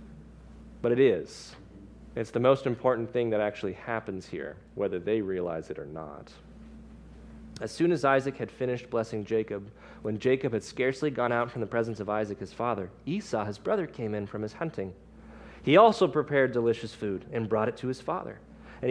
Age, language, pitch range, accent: 30-49, English, 110-150 Hz, American